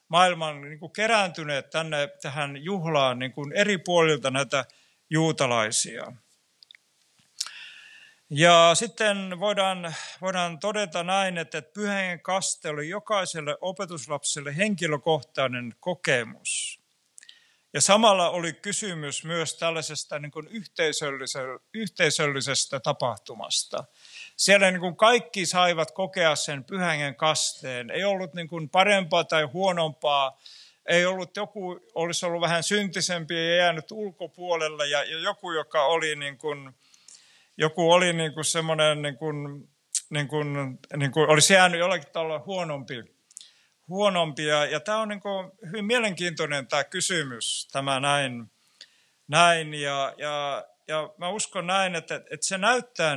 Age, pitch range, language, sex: 50-69, 150-185 Hz, Finnish, male